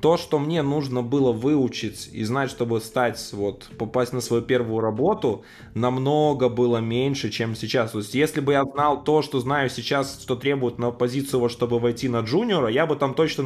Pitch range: 115-145 Hz